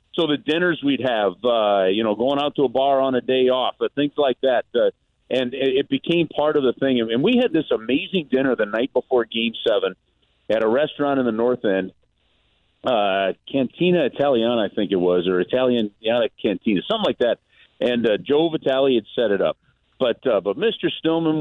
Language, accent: English, American